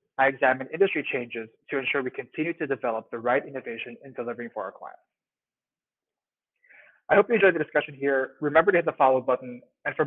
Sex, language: male, English